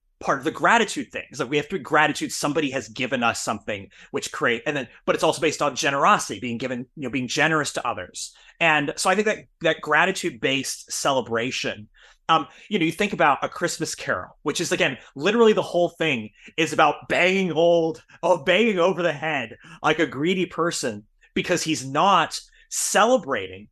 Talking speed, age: 190 wpm, 30-49